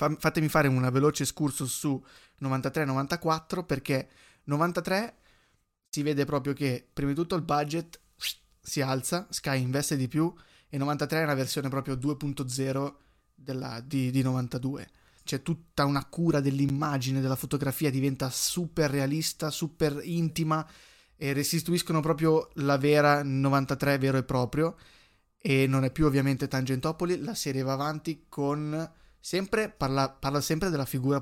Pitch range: 135-155 Hz